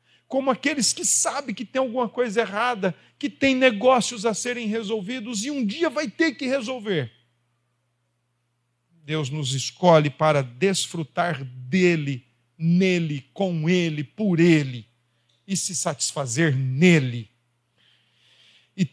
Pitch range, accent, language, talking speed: 130-200 Hz, Brazilian, Portuguese, 120 wpm